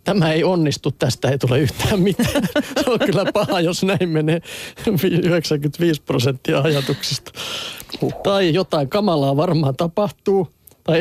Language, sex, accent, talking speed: Finnish, male, native, 130 wpm